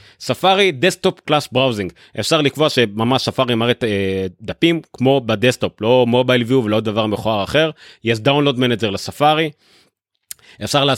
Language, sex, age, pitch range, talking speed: Hebrew, male, 30-49, 110-155 Hz, 135 wpm